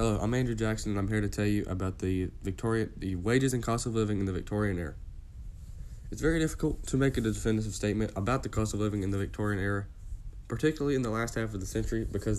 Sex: male